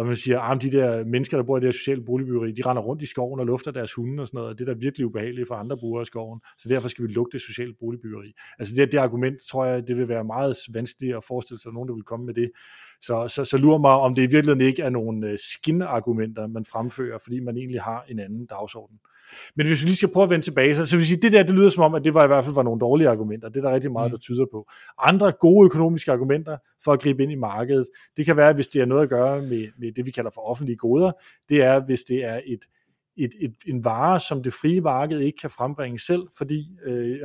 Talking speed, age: 275 wpm, 30-49